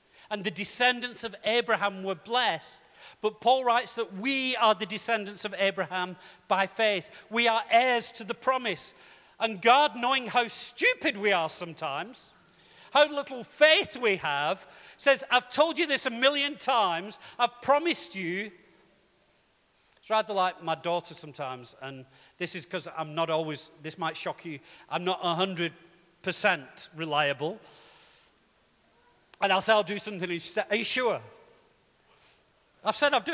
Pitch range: 190-265 Hz